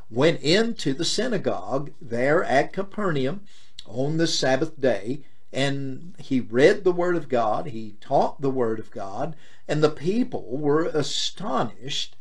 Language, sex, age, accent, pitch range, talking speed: English, male, 50-69, American, 130-165 Hz, 145 wpm